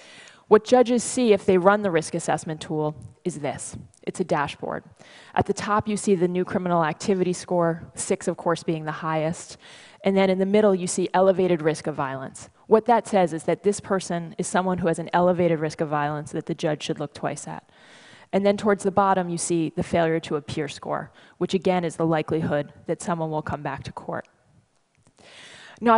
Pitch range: 160-195 Hz